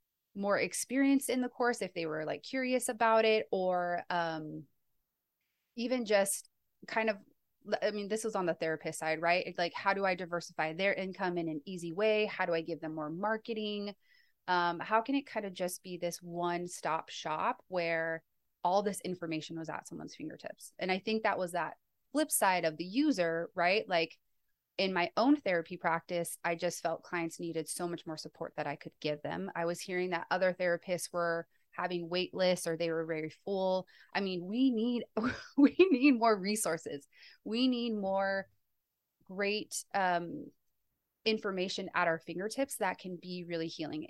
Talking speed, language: 180 wpm, English